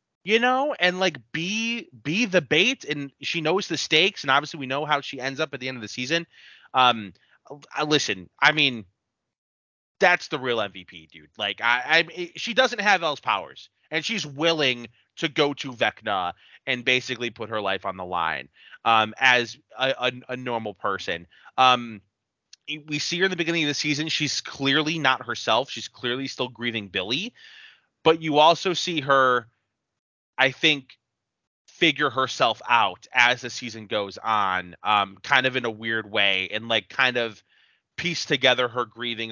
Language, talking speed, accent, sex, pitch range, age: English, 175 wpm, American, male, 110-150 Hz, 20-39